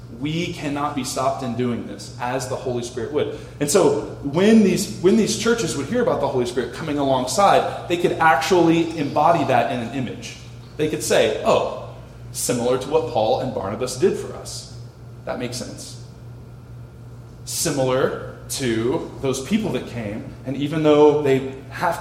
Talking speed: 170 wpm